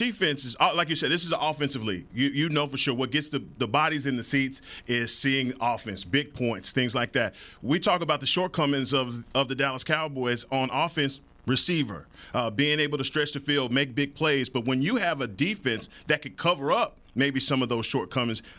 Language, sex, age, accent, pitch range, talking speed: English, male, 40-59, American, 125-155 Hz, 220 wpm